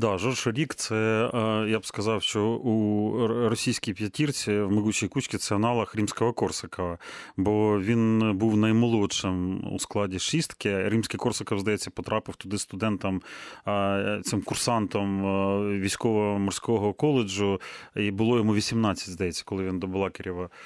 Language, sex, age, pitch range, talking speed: Ukrainian, male, 30-49, 100-115 Hz, 135 wpm